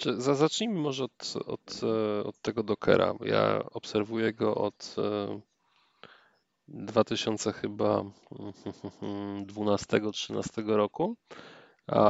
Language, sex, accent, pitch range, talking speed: Polish, male, native, 105-125 Hz, 80 wpm